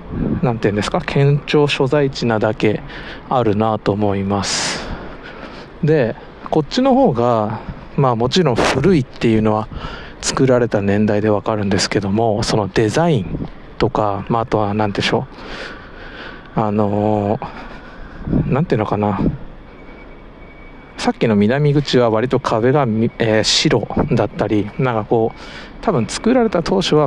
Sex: male